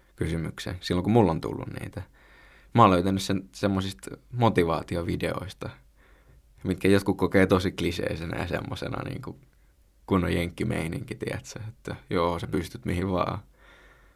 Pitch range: 90-110 Hz